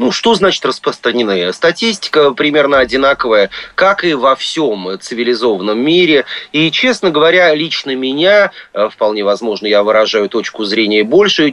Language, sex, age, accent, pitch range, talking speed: Russian, male, 30-49, native, 105-140 Hz, 130 wpm